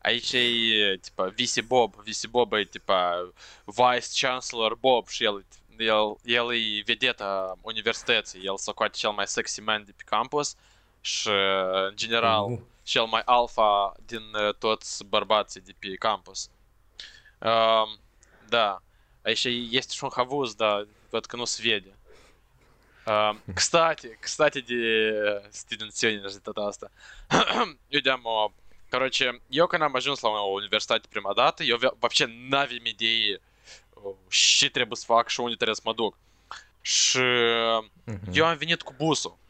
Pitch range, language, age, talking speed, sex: 105-135 Hz, Romanian, 20-39, 115 wpm, male